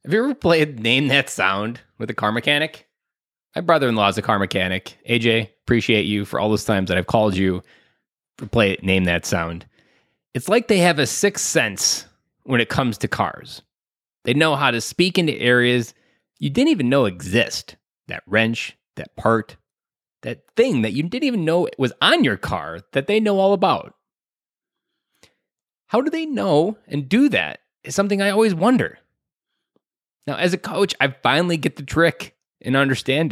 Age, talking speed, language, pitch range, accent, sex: 20-39, 180 wpm, English, 110-170 Hz, American, male